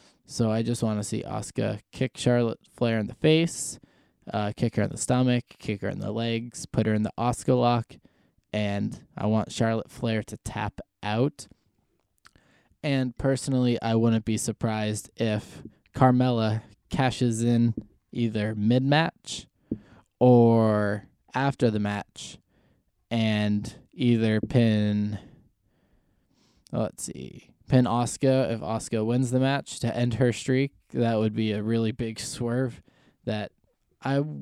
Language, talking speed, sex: English, 140 wpm, male